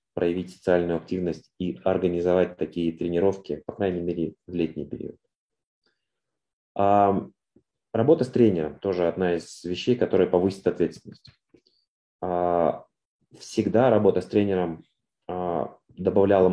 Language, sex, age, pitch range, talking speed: Russian, male, 30-49, 90-105 Hz, 100 wpm